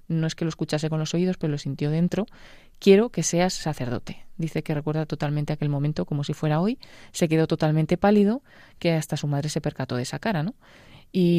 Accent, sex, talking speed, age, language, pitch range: Spanish, female, 215 wpm, 20-39, Spanish, 150-180 Hz